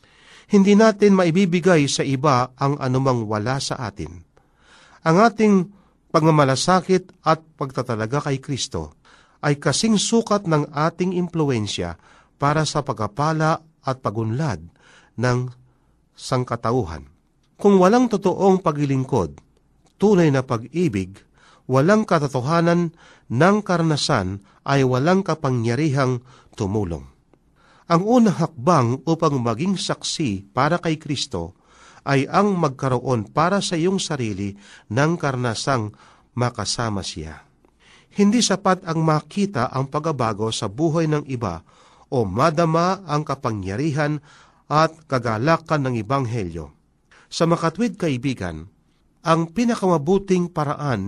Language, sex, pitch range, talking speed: Filipino, male, 120-170 Hz, 105 wpm